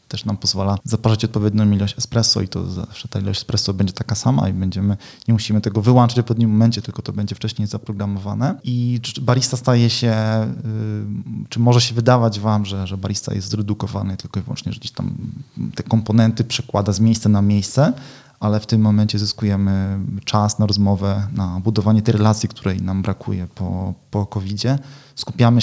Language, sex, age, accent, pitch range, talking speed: Polish, male, 20-39, native, 100-115 Hz, 180 wpm